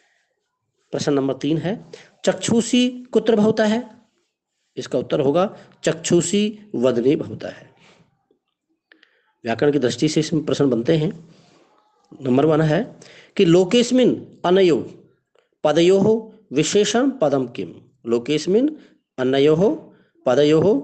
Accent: Indian